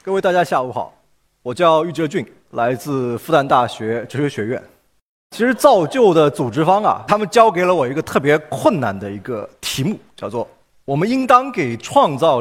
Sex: male